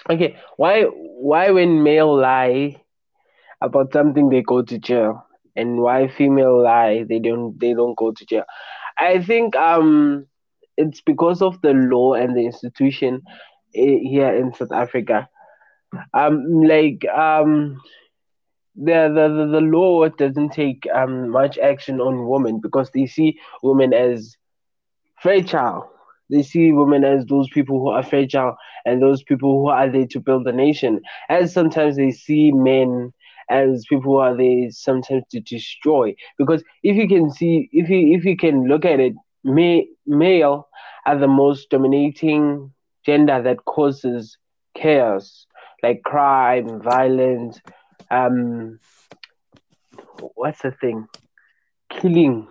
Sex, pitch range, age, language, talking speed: male, 125-155 Hz, 20-39, English, 140 wpm